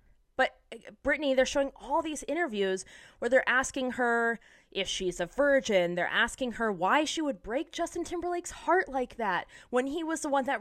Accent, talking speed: American, 185 wpm